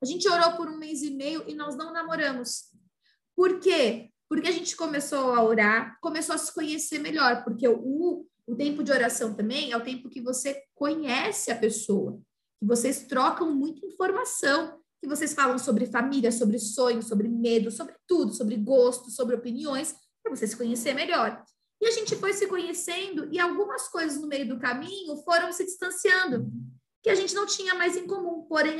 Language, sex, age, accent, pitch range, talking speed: Portuguese, female, 20-39, Brazilian, 245-320 Hz, 190 wpm